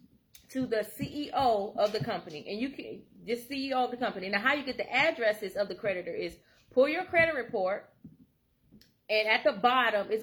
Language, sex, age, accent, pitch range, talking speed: English, female, 30-49, American, 200-265 Hz, 195 wpm